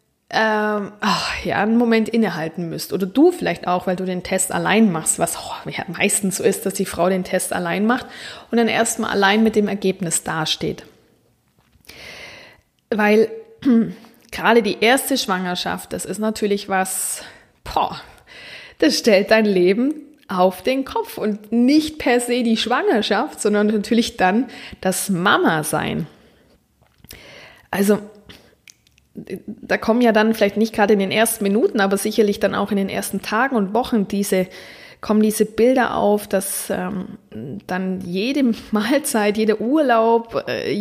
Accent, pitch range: German, 195-230 Hz